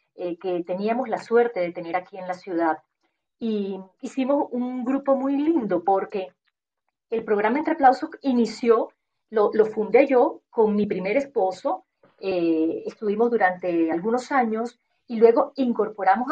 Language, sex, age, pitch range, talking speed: Spanish, female, 40-59, 185-245 Hz, 145 wpm